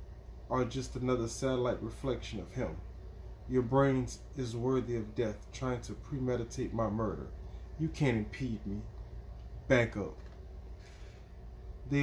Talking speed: 125 wpm